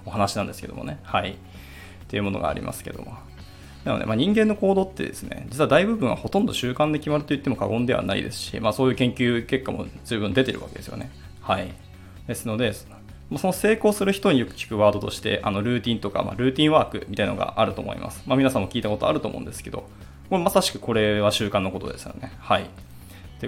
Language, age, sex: Japanese, 20-39, male